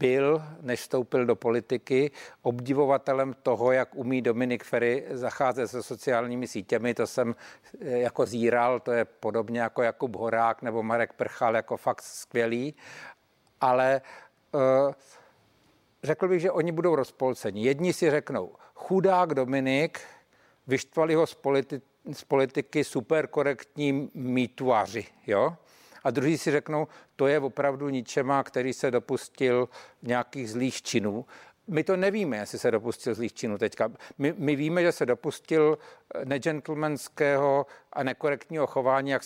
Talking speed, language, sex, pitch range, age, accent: 135 wpm, Czech, male, 125-150 Hz, 50-69, native